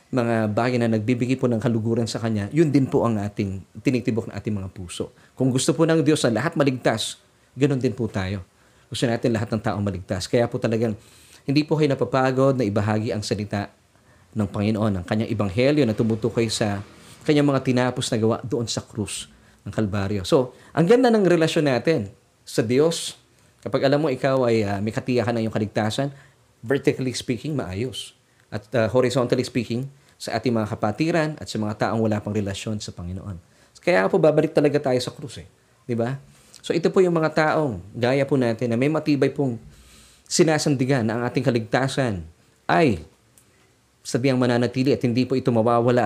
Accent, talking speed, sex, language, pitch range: native, 180 wpm, male, Filipino, 110-140 Hz